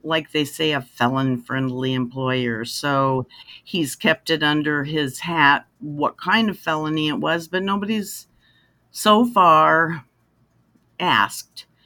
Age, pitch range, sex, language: 50-69, 130-160 Hz, female, English